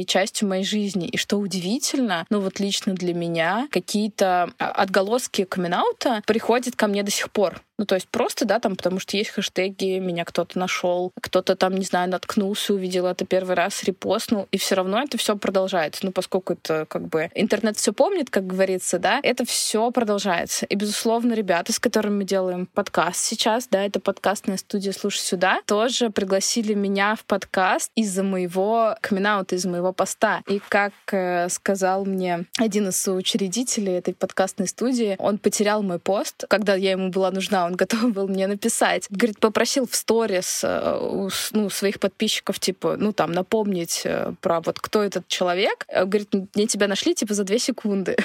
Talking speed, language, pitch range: 175 wpm, Russian, 185-220 Hz